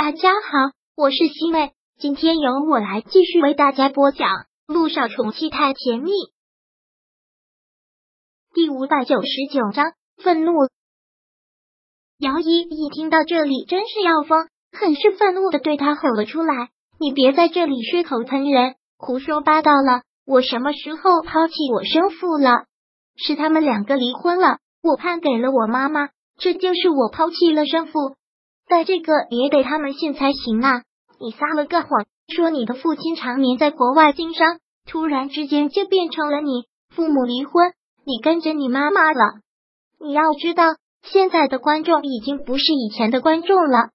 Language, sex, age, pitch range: Chinese, male, 30-49, 265-330 Hz